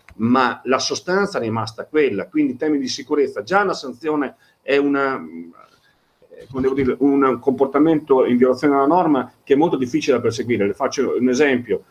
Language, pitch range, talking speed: Italian, 120-160 Hz, 170 wpm